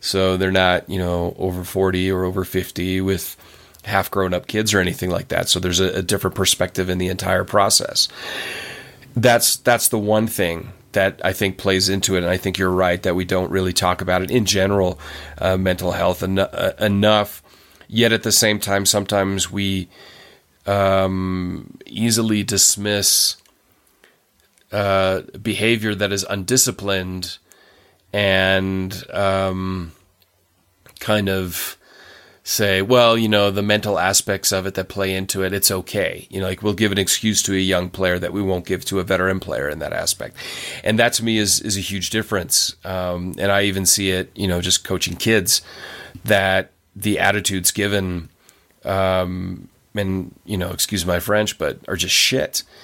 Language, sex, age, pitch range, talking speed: English, male, 30-49, 90-105 Hz, 170 wpm